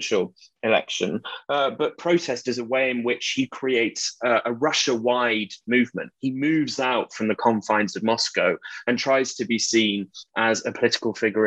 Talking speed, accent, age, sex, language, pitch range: 175 wpm, British, 20-39, male, English, 110-125 Hz